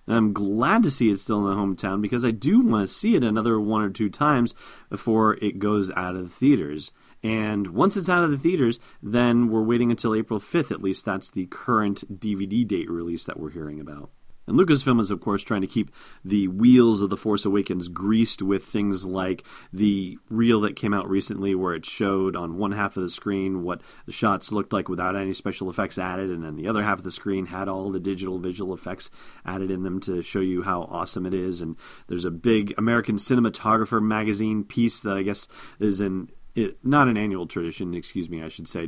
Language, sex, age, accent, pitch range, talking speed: English, male, 30-49, American, 90-110 Hz, 220 wpm